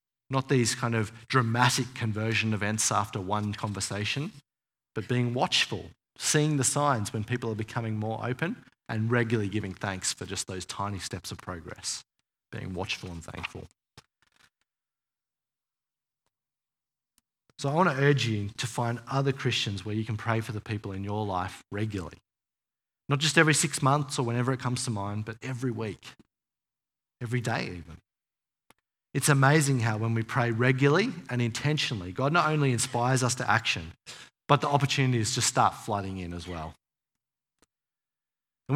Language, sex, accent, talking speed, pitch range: English, male, Australian, 155 wpm, 105-135 Hz